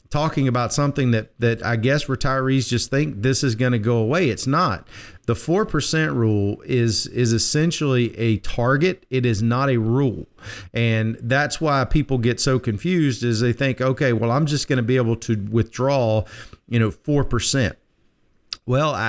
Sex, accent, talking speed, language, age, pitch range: male, American, 175 wpm, English, 40-59, 120-145 Hz